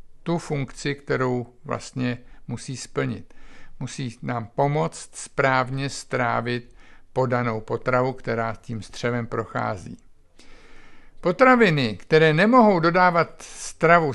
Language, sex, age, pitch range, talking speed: Czech, male, 50-69, 125-165 Hz, 95 wpm